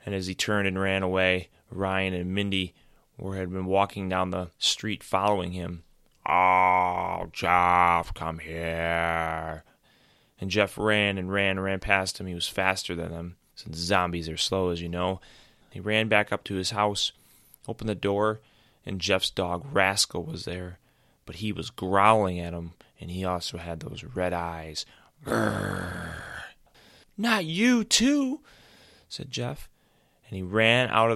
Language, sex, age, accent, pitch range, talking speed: English, male, 20-39, American, 85-100 Hz, 160 wpm